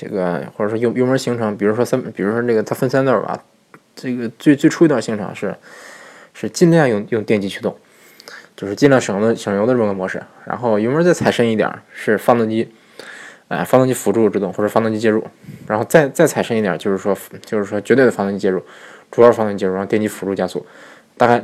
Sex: male